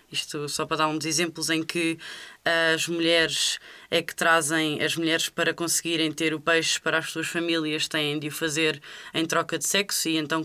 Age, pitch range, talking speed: 20-39, 155-175 Hz, 205 wpm